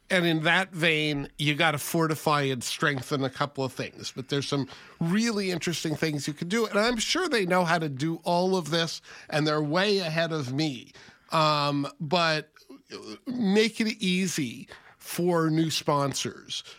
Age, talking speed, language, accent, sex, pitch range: 50-69, 170 wpm, English, American, male, 145-180 Hz